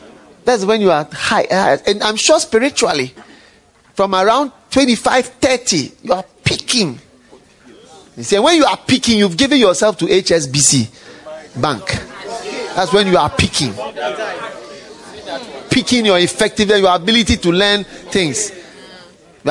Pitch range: 125-195 Hz